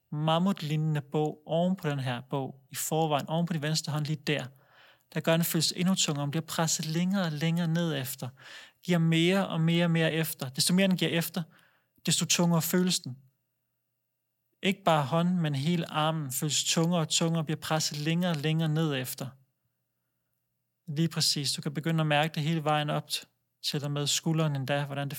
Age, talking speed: 30-49, 195 wpm